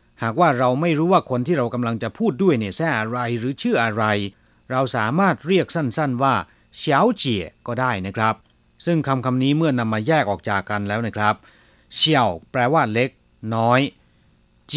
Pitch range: 105-150 Hz